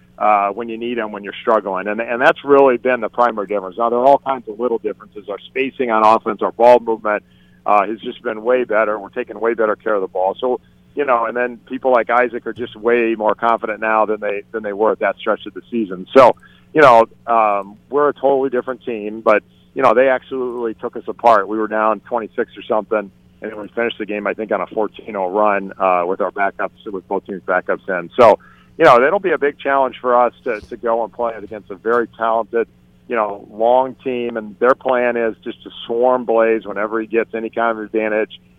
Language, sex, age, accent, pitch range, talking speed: English, male, 40-59, American, 105-125 Hz, 240 wpm